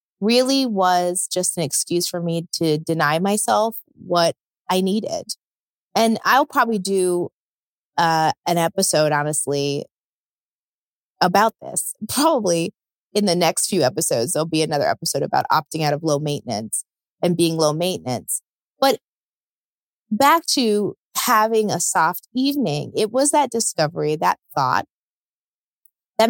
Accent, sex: American, female